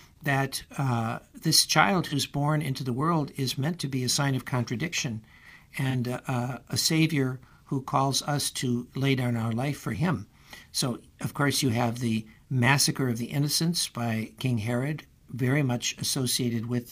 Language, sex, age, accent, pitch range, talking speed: English, male, 60-79, American, 120-150 Hz, 170 wpm